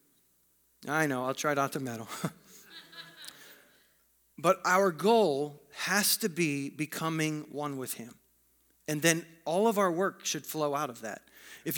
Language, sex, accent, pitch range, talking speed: English, male, American, 145-185 Hz, 150 wpm